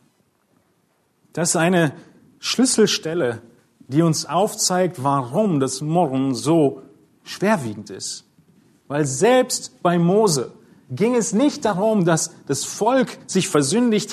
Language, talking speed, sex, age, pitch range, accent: German, 110 wpm, male, 40-59, 130-195 Hz, German